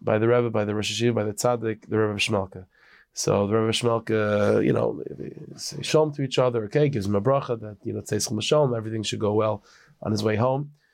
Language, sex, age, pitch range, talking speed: English, male, 30-49, 110-140 Hz, 210 wpm